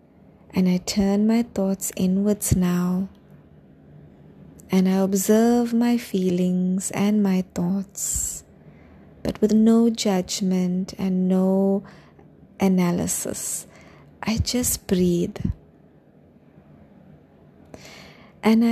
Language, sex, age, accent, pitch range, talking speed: English, female, 30-49, Indian, 185-220 Hz, 85 wpm